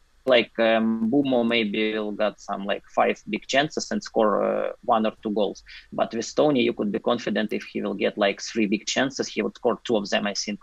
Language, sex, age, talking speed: English, male, 20-39, 230 wpm